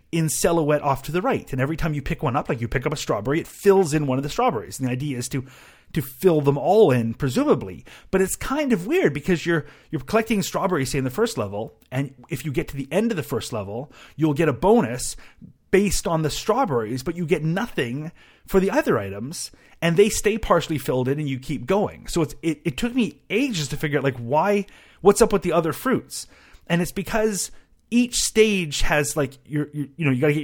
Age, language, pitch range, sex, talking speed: 30-49, English, 130-170 Hz, male, 240 wpm